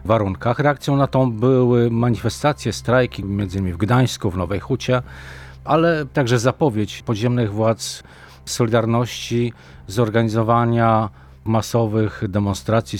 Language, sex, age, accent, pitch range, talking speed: Polish, male, 40-59, native, 105-130 Hz, 105 wpm